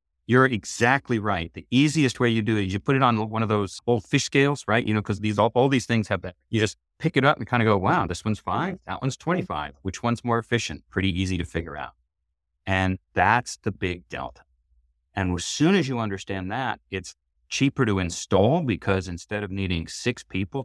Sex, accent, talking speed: male, American, 225 wpm